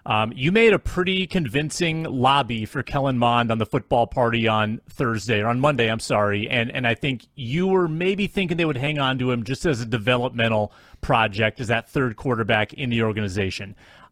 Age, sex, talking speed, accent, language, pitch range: 30-49, male, 200 wpm, American, English, 115-150 Hz